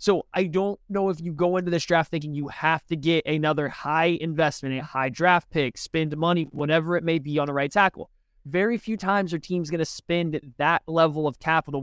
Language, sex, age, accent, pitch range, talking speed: English, male, 20-39, American, 145-180 Hz, 225 wpm